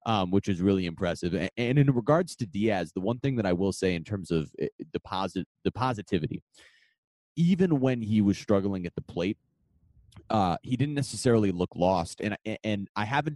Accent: American